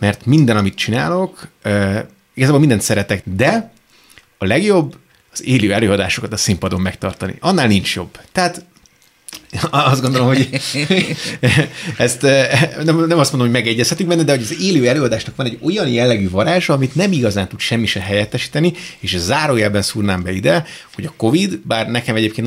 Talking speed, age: 160 wpm, 30-49